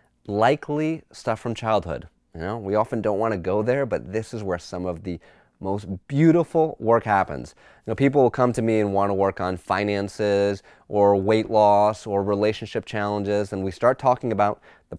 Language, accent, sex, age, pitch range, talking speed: English, American, male, 30-49, 90-115 Hz, 195 wpm